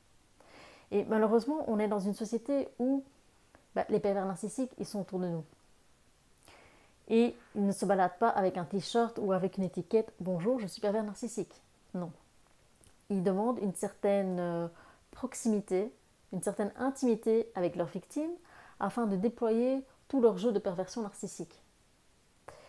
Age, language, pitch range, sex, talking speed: 30-49, French, 190-235 Hz, female, 150 wpm